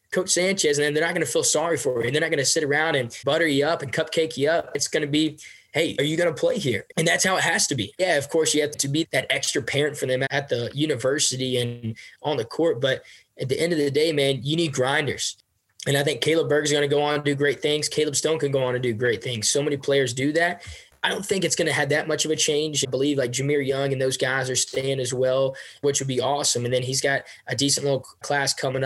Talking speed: 285 wpm